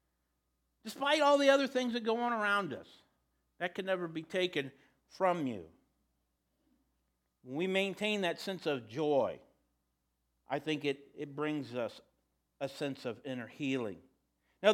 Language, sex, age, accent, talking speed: English, male, 50-69, American, 145 wpm